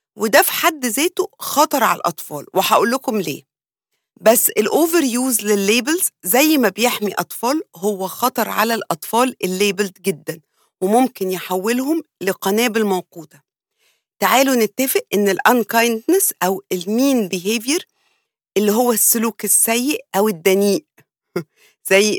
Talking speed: 115 wpm